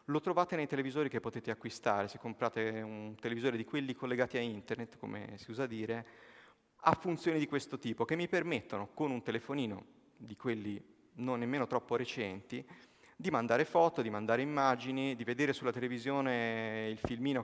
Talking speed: 170 wpm